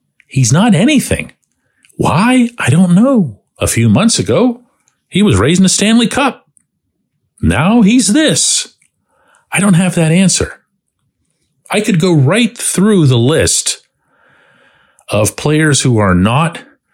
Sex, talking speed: male, 130 wpm